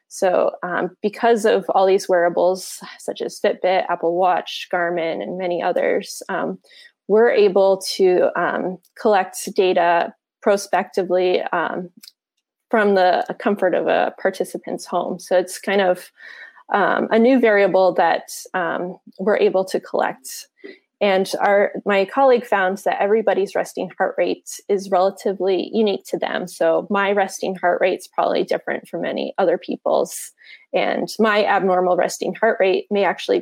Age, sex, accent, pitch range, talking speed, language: 20-39, female, American, 185-225 Hz, 145 wpm, English